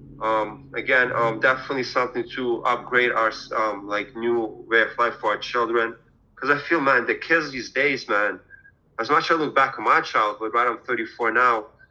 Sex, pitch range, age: male, 110-135 Hz, 30-49